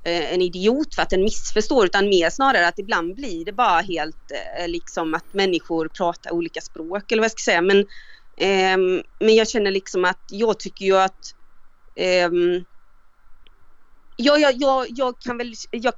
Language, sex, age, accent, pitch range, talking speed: Swedish, female, 30-49, native, 180-230 Hz, 170 wpm